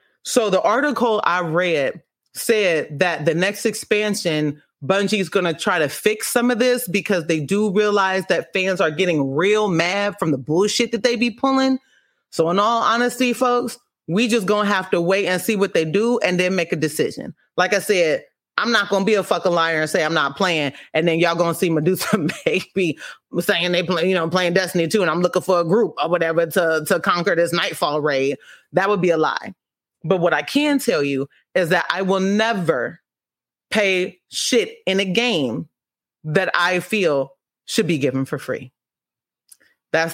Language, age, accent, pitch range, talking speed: English, 30-49, American, 175-225 Hz, 200 wpm